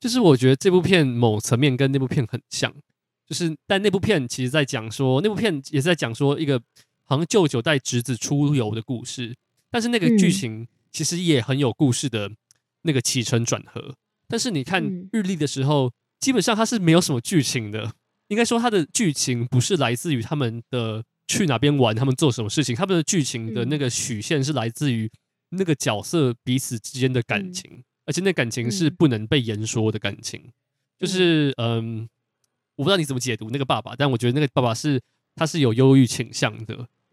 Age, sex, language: 20-39, male, Chinese